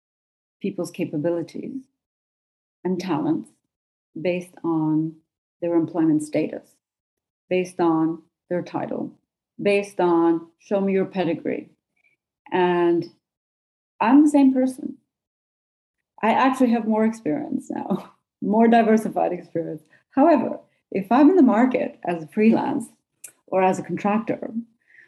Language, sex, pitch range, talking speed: English, female, 165-245 Hz, 110 wpm